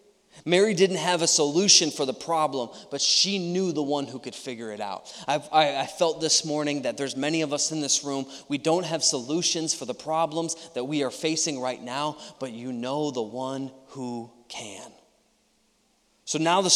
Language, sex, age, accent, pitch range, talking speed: English, male, 20-39, American, 130-170 Hz, 195 wpm